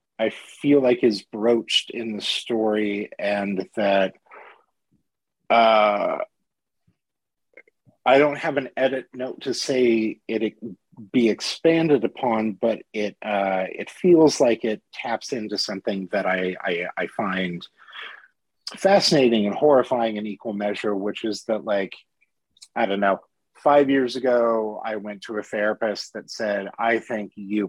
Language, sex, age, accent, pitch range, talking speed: English, male, 30-49, American, 105-130 Hz, 140 wpm